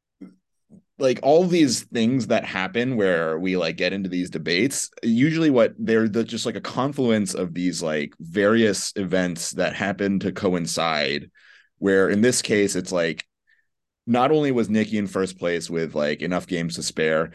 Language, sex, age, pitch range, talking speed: English, male, 30-49, 85-110 Hz, 165 wpm